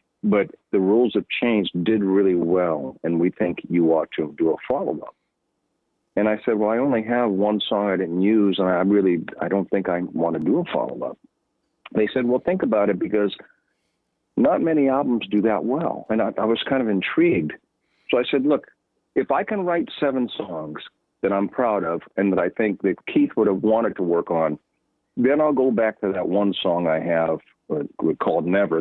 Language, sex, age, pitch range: English, male, 50-69, 90-115 Hz